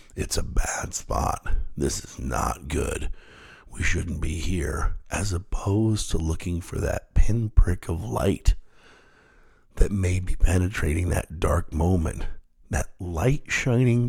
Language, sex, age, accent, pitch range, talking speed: English, male, 50-69, American, 85-110 Hz, 130 wpm